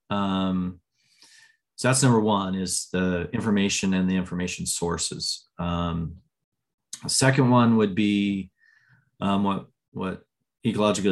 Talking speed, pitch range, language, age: 120 wpm, 95-120 Hz, English, 30-49